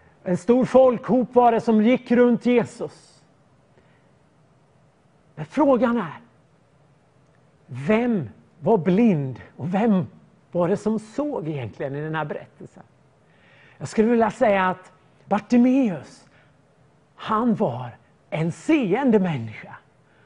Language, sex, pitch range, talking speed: Swedish, male, 150-245 Hz, 110 wpm